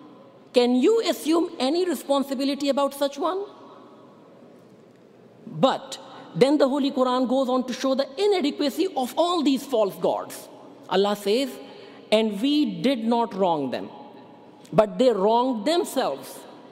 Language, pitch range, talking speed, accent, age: English, 215-275 Hz, 130 wpm, Indian, 50-69